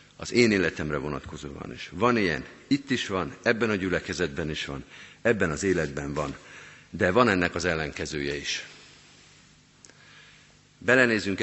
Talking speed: 135 wpm